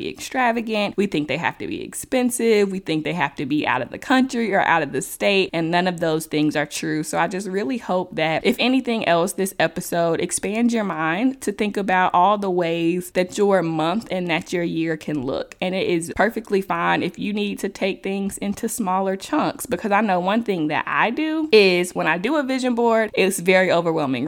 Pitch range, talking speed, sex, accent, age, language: 170-215 Hz, 225 wpm, female, American, 20-39, English